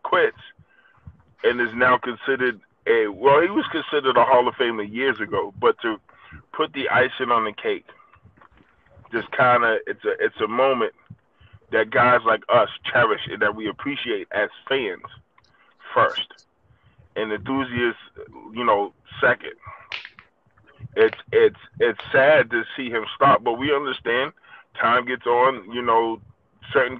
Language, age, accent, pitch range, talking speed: English, 20-39, American, 115-130 Hz, 145 wpm